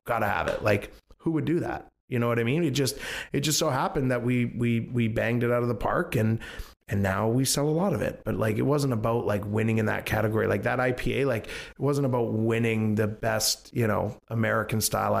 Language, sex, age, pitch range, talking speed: English, male, 30-49, 110-125 Hz, 250 wpm